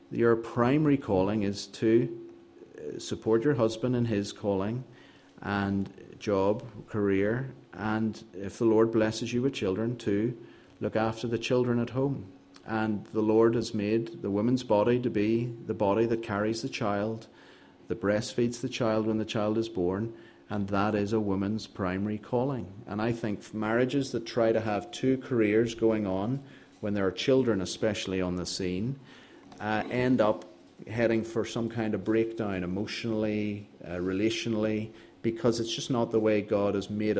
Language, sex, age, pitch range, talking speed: English, male, 30-49, 100-115 Hz, 165 wpm